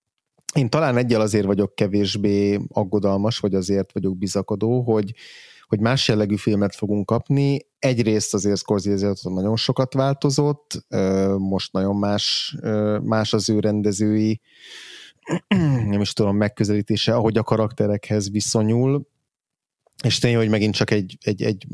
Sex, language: male, Hungarian